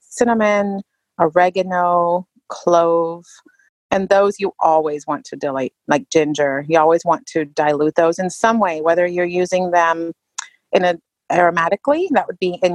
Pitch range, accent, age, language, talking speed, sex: 165-200 Hz, American, 30-49, English, 150 wpm, female